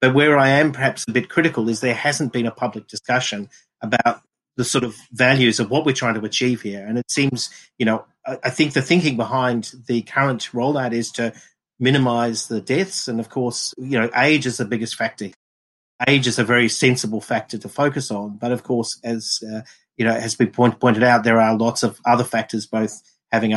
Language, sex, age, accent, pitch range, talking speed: English, male, 40-59, Australian, 110-125 Hz, 215 wpm